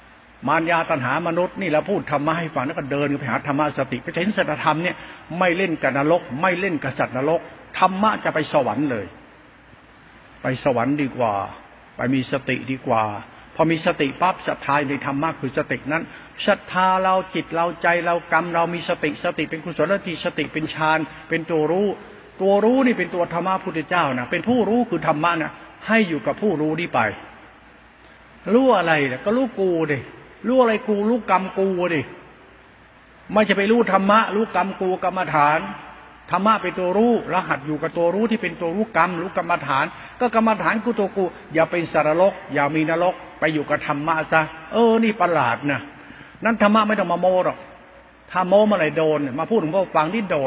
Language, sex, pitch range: Thai, male, 150-190 Hz